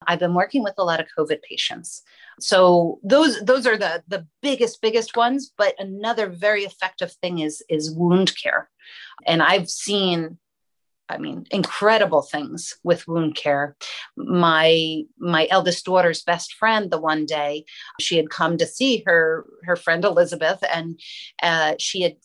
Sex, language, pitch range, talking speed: female, English, 170-215 Hz, 160 wpm